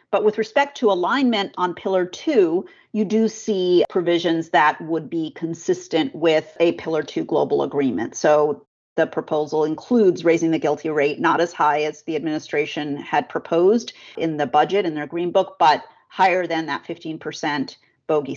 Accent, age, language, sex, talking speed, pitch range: American, 40-59, English, female, 165 wpm, 160-185 Hz